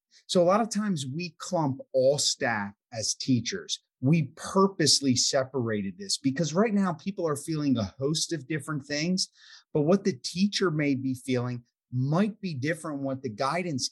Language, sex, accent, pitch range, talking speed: English, male, American, 130-170 Hz, 170 wpm